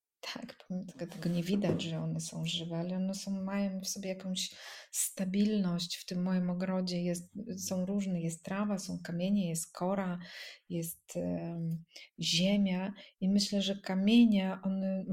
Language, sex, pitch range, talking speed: Polish, female, 175-200 Hz, 145 wpm